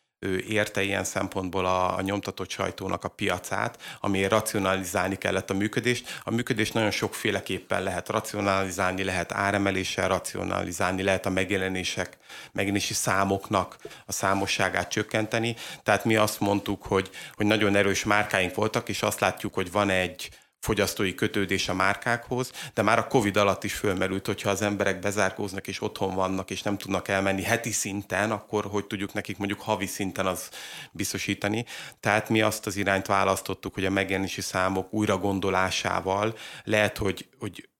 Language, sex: Hungarian, male